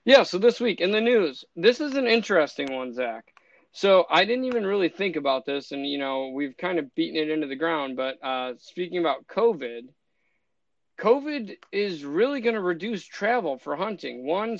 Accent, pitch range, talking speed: American, 140-180 Hz, 195 wpm